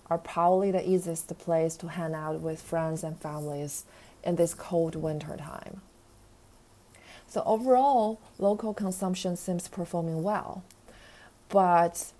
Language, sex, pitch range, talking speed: English, female, 165-200 Hz, 125 wpm